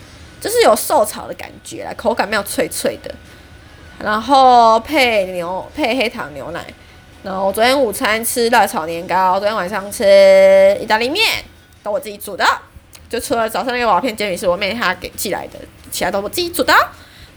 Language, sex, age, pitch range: Chinese, female, 20-39, 210-270 Hz